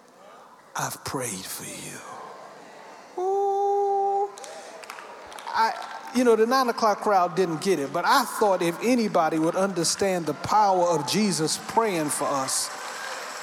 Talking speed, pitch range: 125 wpm, 195-280 Hz